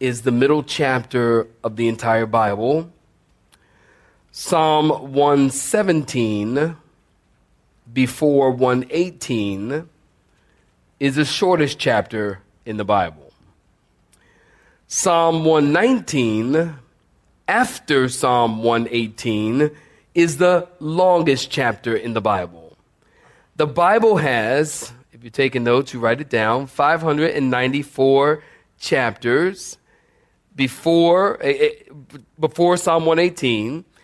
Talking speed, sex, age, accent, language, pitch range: 85 wpm, male, 40-59, American, English, 125-165 Hz